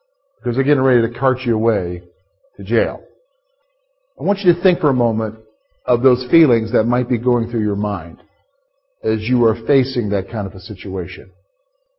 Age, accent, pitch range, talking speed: 50-69, American, 120-195 Hz, 185 wpm